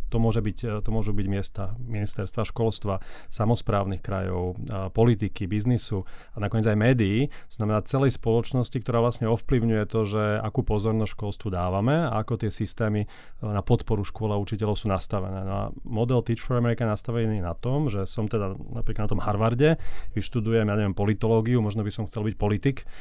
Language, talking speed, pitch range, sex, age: Slovak, 175 wpm, 105-120 Hz, male, 30-49